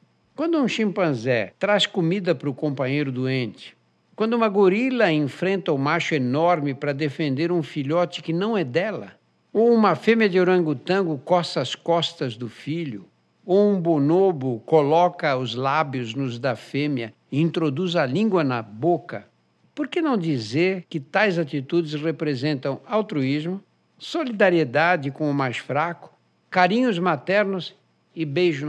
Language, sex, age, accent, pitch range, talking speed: Portuguese, male, 60-79, Brazilian, 135-185 Hz, 140 wpm